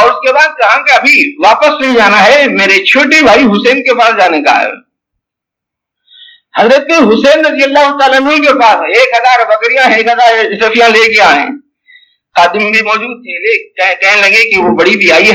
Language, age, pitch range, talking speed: English, 50-69, 200-295 Hz, 190 wpm